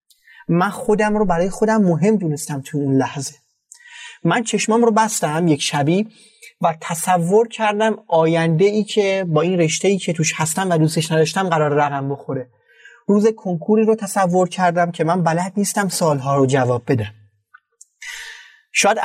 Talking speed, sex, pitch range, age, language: 155 wpm, male, 155-220 Hz, 30-49, Persian